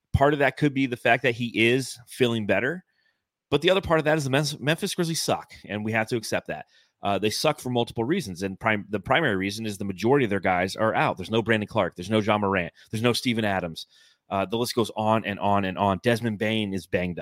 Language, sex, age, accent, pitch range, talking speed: English, male, 30-49, American, 100-125 Hz, 250 wpm